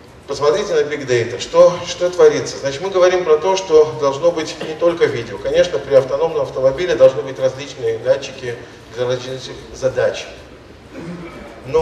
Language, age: Russian, 40-59